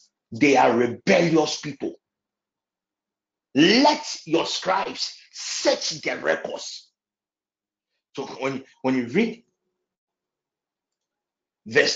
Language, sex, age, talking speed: English, male, 50-69, 80 wpm